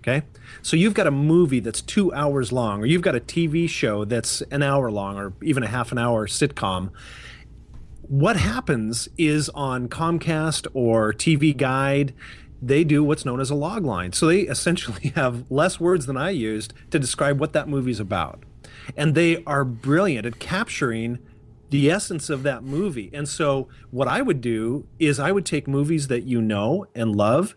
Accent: American